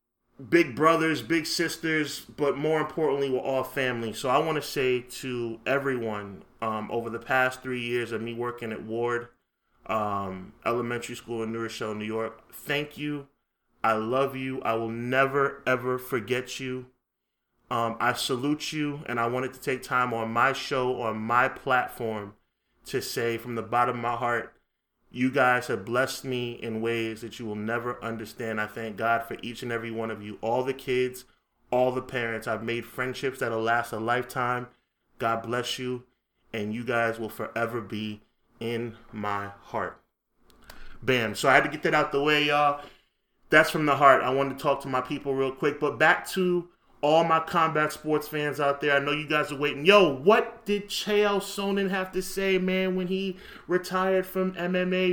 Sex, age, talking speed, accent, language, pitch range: male, 20-39, 190 wpm, American, English, 120-175 Hz